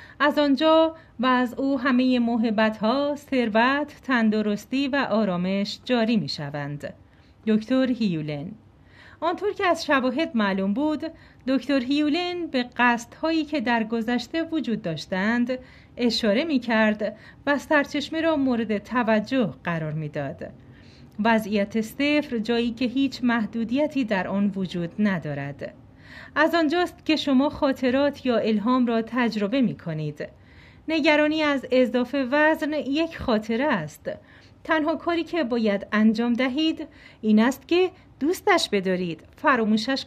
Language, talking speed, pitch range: Persian, 120 wpm, 210-290 Hz